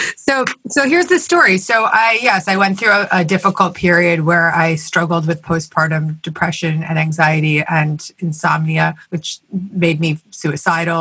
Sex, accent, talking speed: female, American, 160 wpm